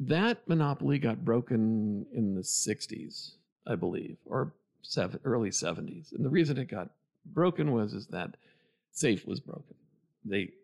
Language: English